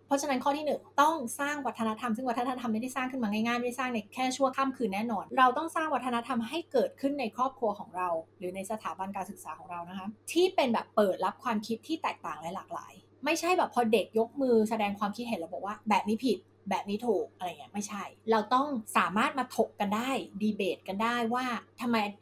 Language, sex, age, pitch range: Thai, female, 20-39, 210-265 Hz